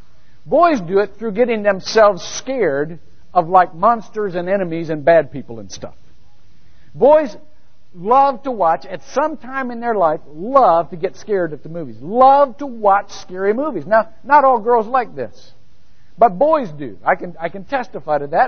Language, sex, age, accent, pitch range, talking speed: English, male, 60-79, American, 165-255 Hz, 180 wpm